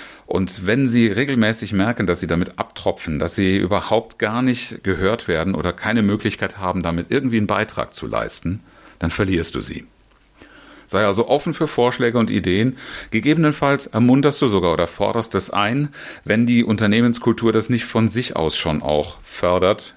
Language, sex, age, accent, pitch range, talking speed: German, male, 40-59, German, 90-120 Hz, 170 wpm